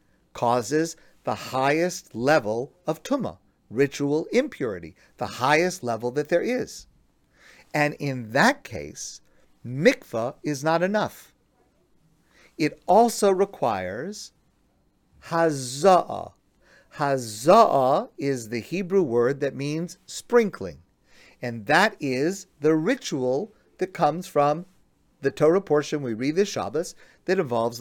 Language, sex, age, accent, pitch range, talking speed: English, male, 50-69, American, 135-165 Hz, 110 wpm